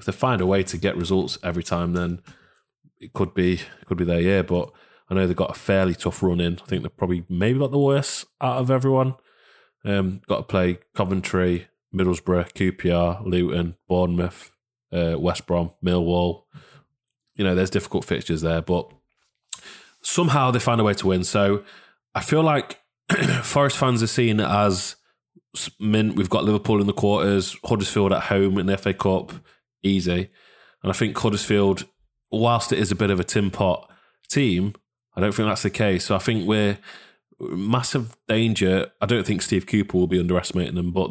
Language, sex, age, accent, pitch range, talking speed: English, male, 20-39, British, 90-110 Hz, 185 wpm